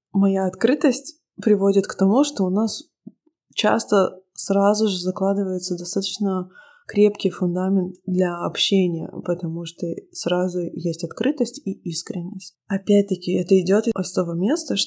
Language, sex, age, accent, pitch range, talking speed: Russian, female, 20-39, native, 170-200 Hz, 120 wpm